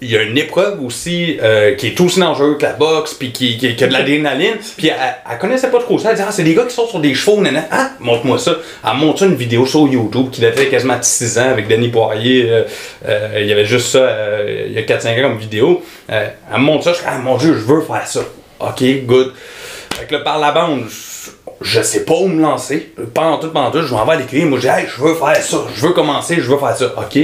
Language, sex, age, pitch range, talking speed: French, male, 30-49, 125-165 Hz, 280 wpm